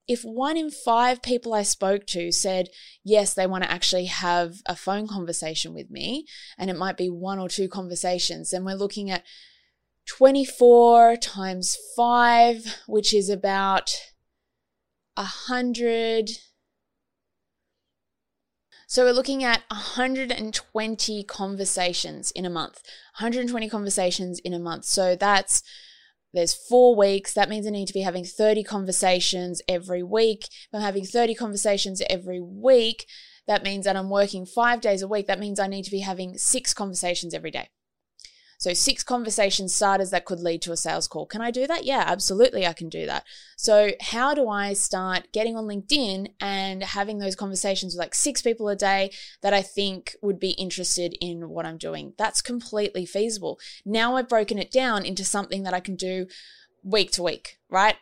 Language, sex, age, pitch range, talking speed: English, female, 20-39, 185-225 Hz, 170 wpm